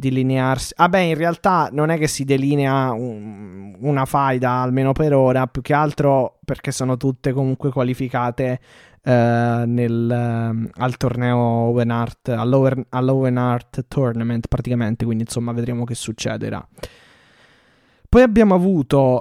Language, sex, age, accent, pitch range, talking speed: Italian, male, 20-39, native, 125-155 Hz, 135 wpm